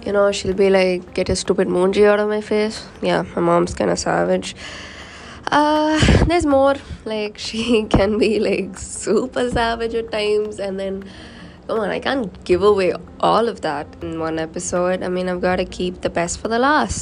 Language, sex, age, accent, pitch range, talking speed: English, female, 20-39, Indian, 180-215 Hz, 200 wpm